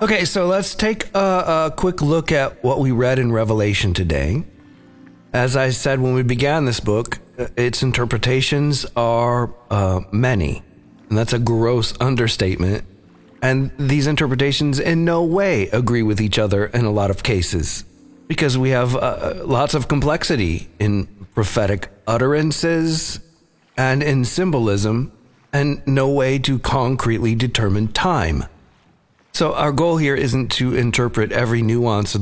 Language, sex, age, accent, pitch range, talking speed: English, male, 40-59, American, 105-135 Hz, 145 wpm